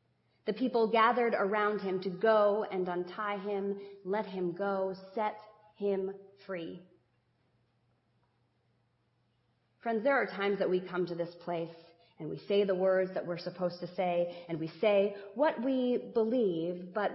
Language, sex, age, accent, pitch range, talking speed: English, female, 30-49, American, 125-205 Hz, 150 wpm